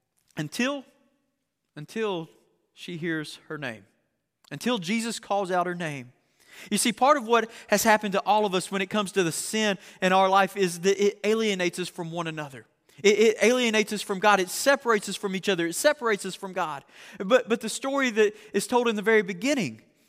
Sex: male